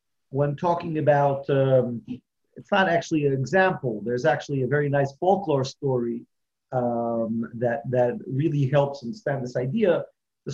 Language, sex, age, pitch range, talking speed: English, male, 40-59, 130-175 Hz, 140 wpm